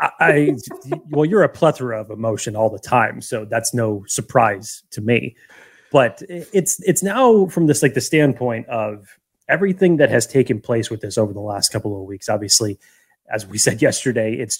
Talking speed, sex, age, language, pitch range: 185 wpm, male, 30-49, English, 110-150 Hz